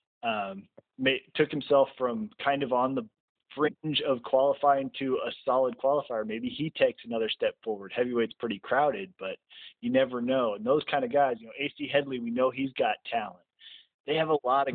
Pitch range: 120-145 Hz